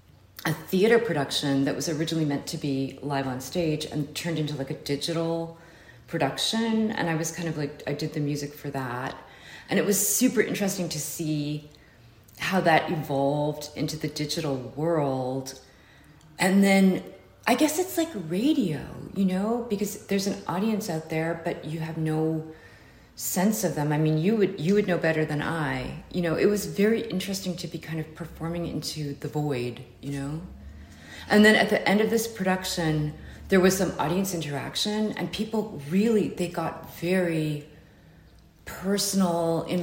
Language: English